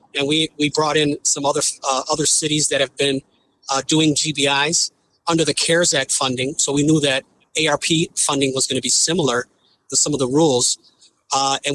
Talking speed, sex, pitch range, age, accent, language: 200 wpm, male, 135-155 Hz, 40-59, American, English